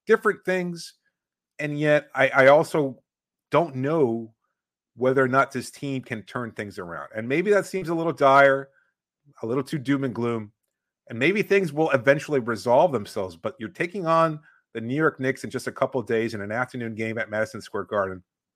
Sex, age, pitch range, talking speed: male, 30-49, 120-165 Hz, 190 wpm